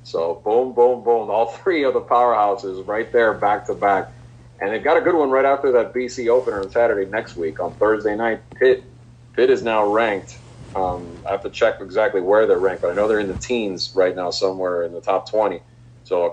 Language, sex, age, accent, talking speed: English, male, 40-59, American, 230 wpm